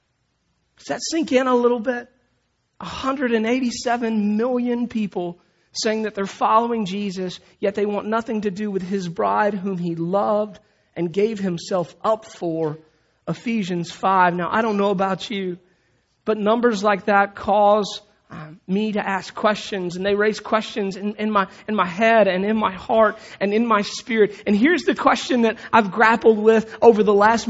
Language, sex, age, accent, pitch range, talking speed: English, male, 40-59, American, 195-230 Hz, 170 wpm